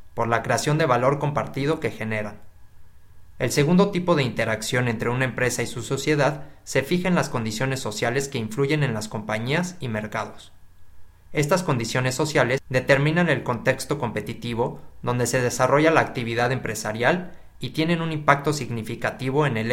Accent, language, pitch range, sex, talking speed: Mexican, Spanish, 110-145 Hz, male, 160 wpm